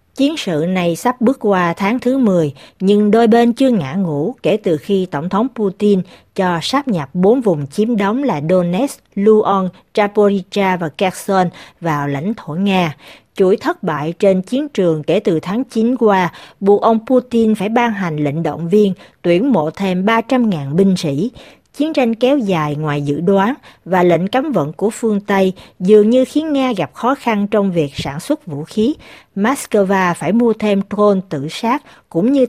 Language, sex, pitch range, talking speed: Vietnamese, female, 170-230 Hz, 185 wpm